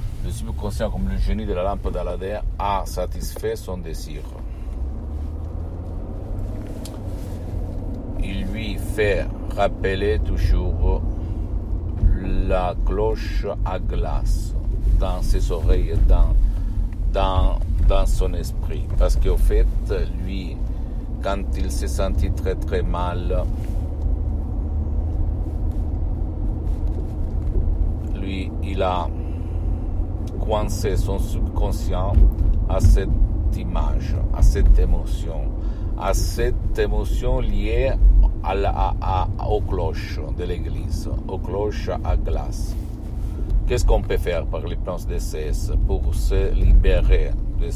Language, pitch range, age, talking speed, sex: Italian, 80-100 Hz, 50-69, 100 wpm, male